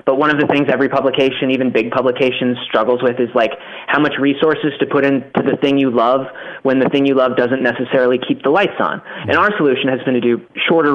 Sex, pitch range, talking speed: male, 125-150 Hz, 235 wpm